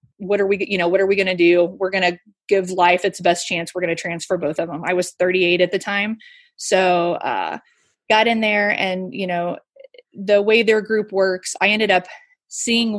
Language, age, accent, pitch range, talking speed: English, 20-39, American, 180-215 Hz, 225 wpm